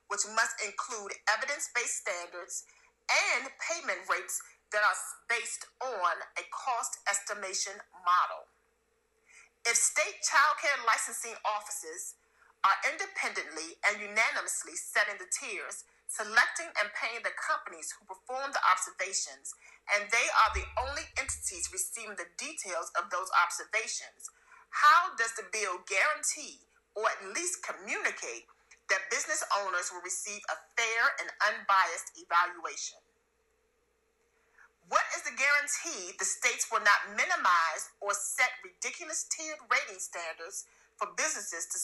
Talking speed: 125 wpm